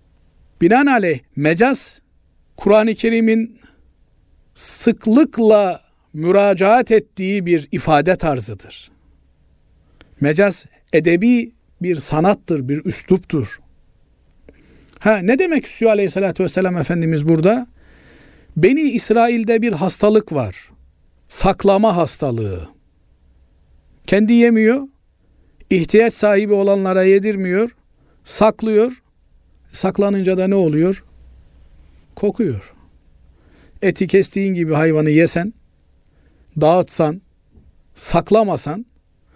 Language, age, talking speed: Turkish, 50-69, 75 wpm